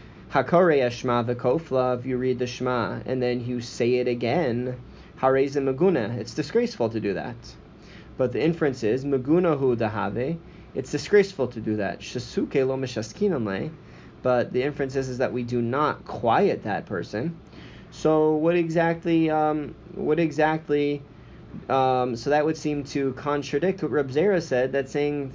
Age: 20-39